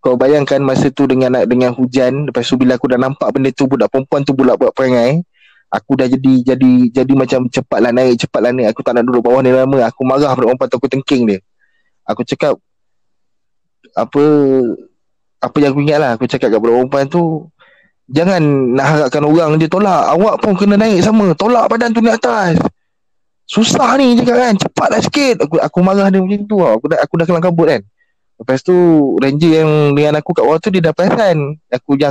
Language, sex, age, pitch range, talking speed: Malay, male, 20-39, 130-185 Hz, 205 wpm